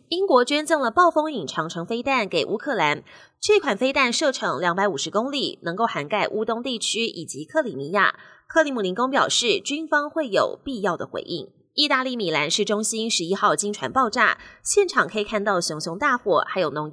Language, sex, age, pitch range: Chinese, female, 20-39, 190-270 Hz